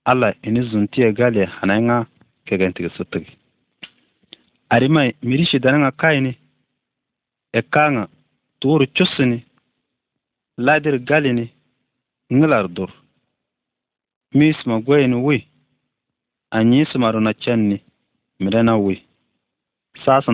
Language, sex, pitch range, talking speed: Arabic, male, 100-130 Hz, 95 wpm